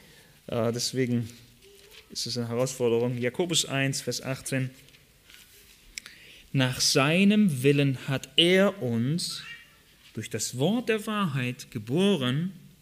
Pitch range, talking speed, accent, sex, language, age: 130-195 Hz, 100 wpm, German, male, German, 30-49